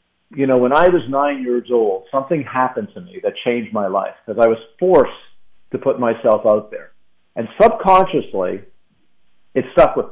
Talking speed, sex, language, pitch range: 180 wpm, male, English, 120-160 Hz